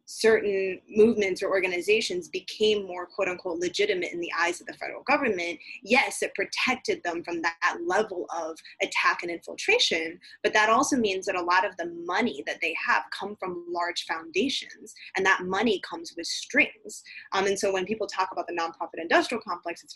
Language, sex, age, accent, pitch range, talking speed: English, female, 20-39, American, 180-245 Hz, 185 wpm